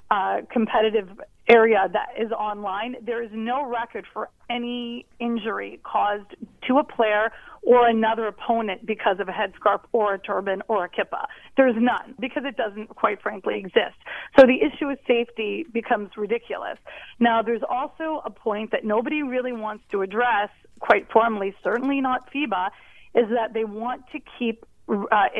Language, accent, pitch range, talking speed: English, American, 205-240 Hz, 160 wpm